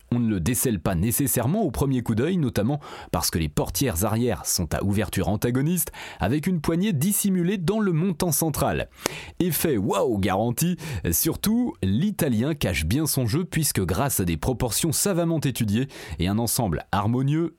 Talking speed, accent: 165 wpm, French